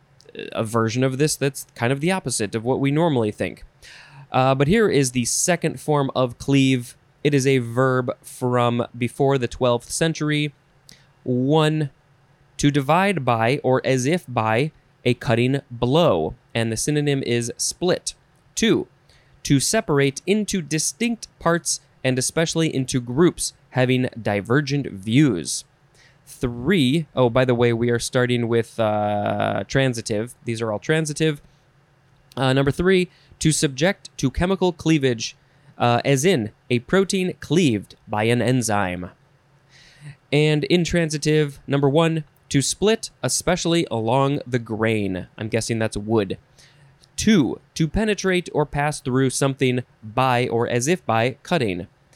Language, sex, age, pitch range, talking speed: English, male, 20-39, 120-150 Hz, 135 wpm